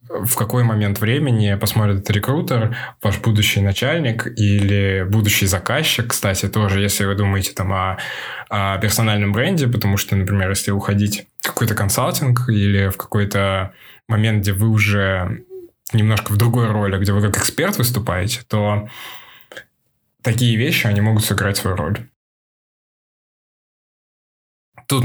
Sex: male